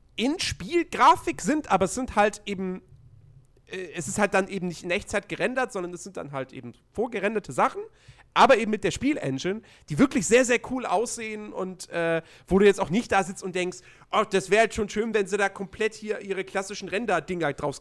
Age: 40-59